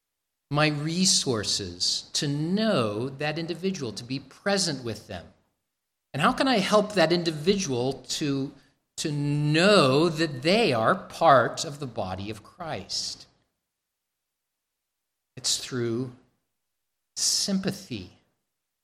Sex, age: male, 50-69